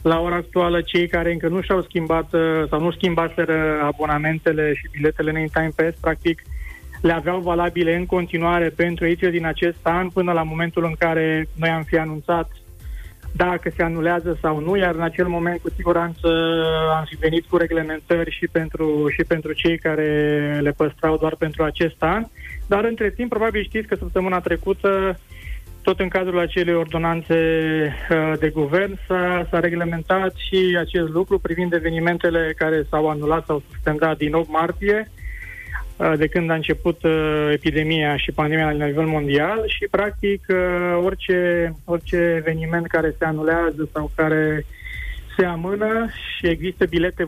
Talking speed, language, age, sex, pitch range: 155 wpm, Romanian, 20-39, male, 160-180 Hz